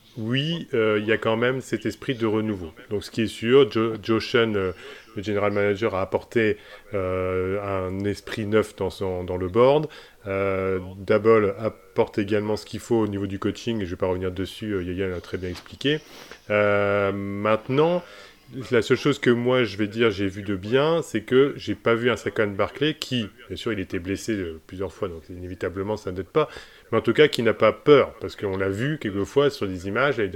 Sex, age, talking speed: male, 30-49, 215 wpm